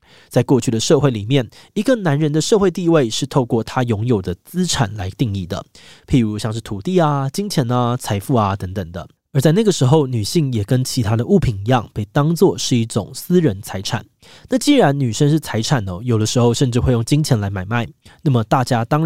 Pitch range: 110-155 Hz